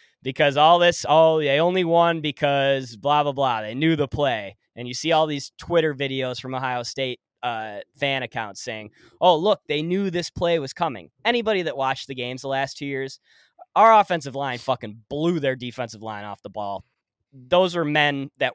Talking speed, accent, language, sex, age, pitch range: 195 wpm, American, English, male, 20-39, 120-155 Hz